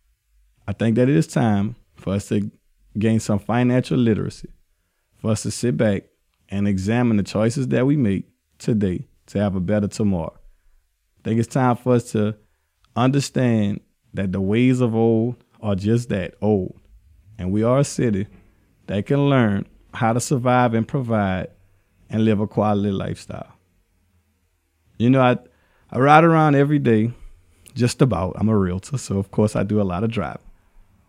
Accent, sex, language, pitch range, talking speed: American, male, English, 100-130 Hz, 170 wpm